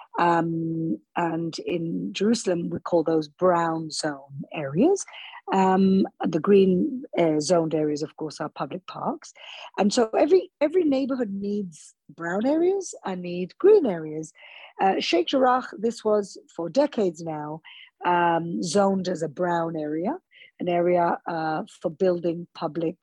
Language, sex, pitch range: English, female, 165-230 Hz